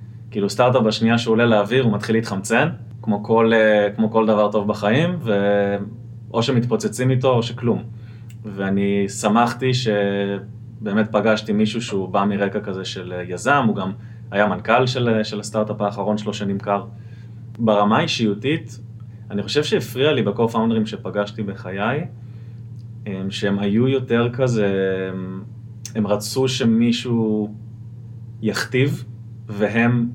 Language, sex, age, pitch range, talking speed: Hebrew, male, 20-39, 105-115 Hz, 120 wpm